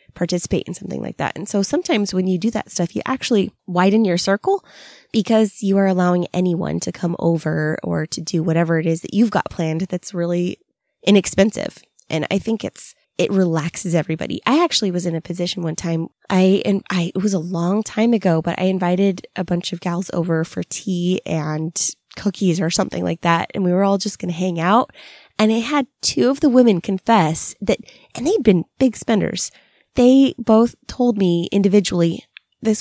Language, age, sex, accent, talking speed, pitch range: English, 20-39, female, American, 200 wpm, 170-205 Hz